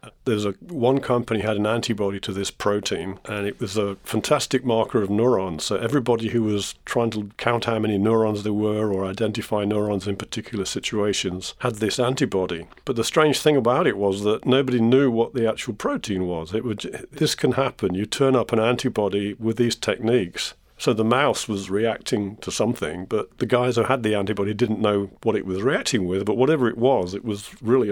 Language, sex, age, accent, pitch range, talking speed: English, male, 50-69, British, 100-120 Hz, 205 wpm